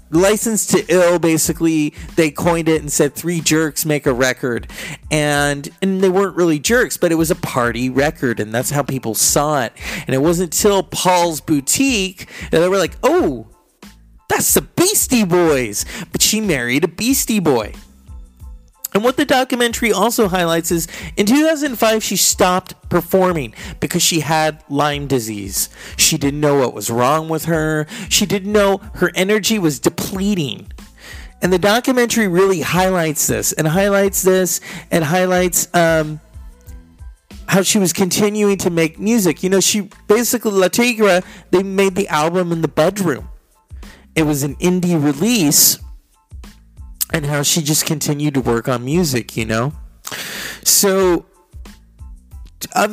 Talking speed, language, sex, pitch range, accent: 155 wpm, English, male, 140-195 Hz, American